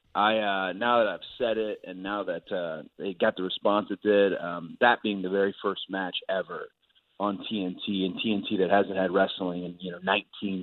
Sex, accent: male, American